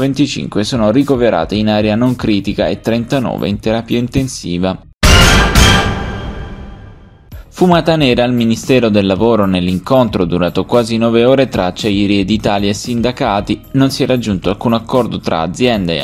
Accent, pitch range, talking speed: native, 100-130 Hz, 140 wpm